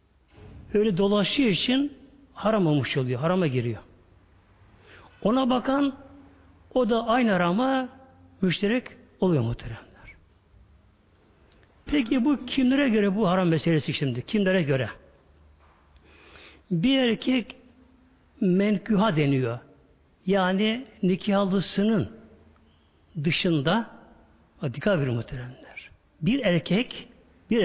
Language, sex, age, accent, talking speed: Turkish, male, 60-79, native, 80 wpm